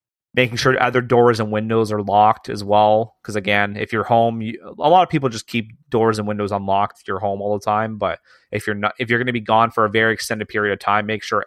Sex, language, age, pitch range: male, English, 30-49, 105-120 Hz